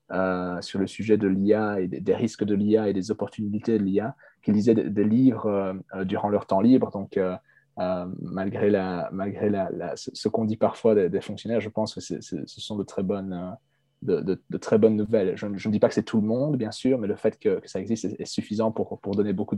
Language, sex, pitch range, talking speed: French, male, 95-110 Hz, 255 wpm